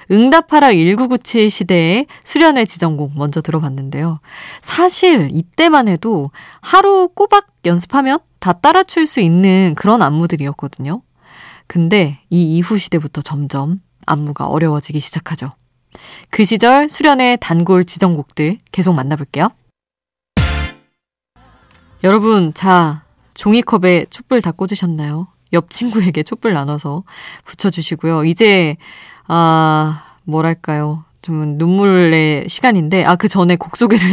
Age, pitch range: 20-39, 160-225 Hz